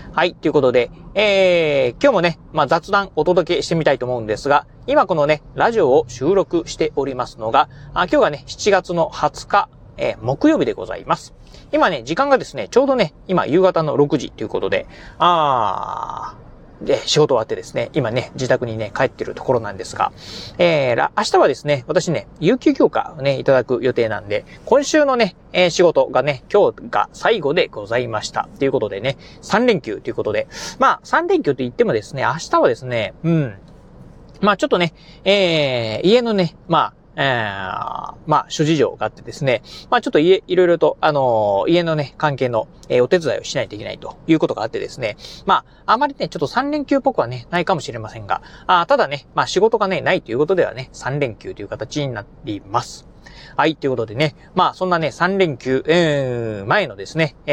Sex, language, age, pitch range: male, Japanese, 30-49, 130-210 Hz